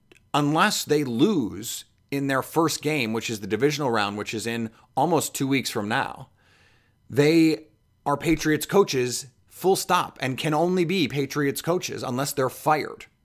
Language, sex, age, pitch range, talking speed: English, male, 30-49, 110-140 Hz, 160 wpm